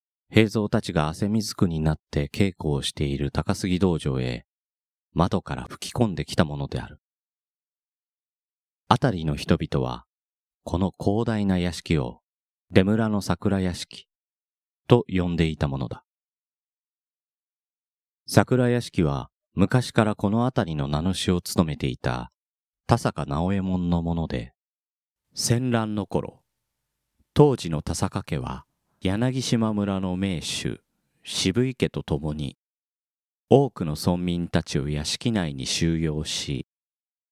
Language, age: Japanese, 40-59